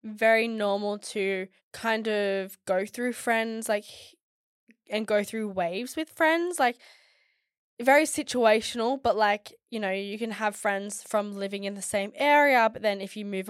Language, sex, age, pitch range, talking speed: English, female, 10-29, 200-225 Hz, 165 wpm